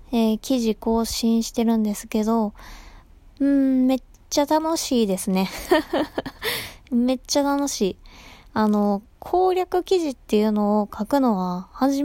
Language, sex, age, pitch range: Japanese, female, 20-39, 205-265 Hz